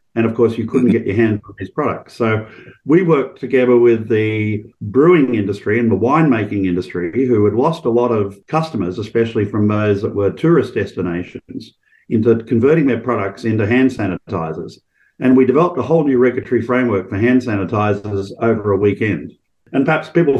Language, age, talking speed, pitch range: English, 50-69, 180 wpm, 105-125 Hz